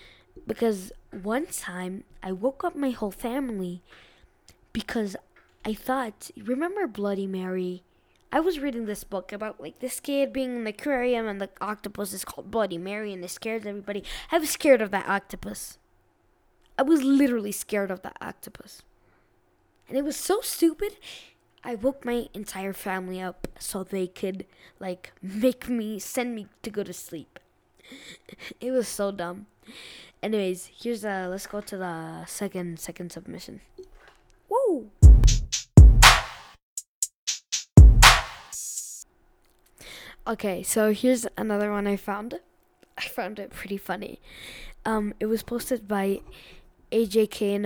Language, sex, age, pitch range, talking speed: English, female, 10-29, 195-250 Hz, 135 wpm